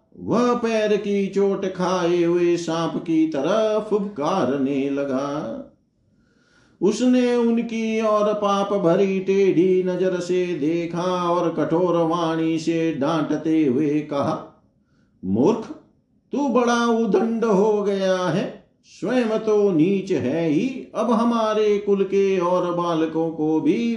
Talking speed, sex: 120 wpm, male